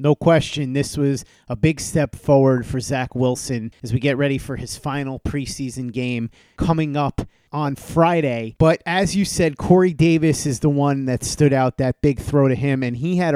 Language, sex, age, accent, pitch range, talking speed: English, male, 30-49, American, 140-180 Hz, 200 wpm